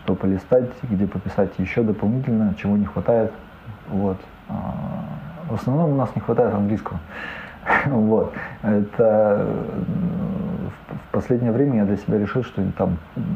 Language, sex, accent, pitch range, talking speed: Ukrainian, male, native, 95-115 Hz, 135 wpm